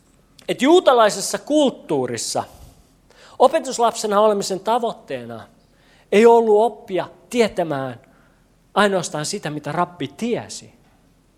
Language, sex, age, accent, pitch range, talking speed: Finnish, male, 40-59, native, 150-230 Hz, 80 wpm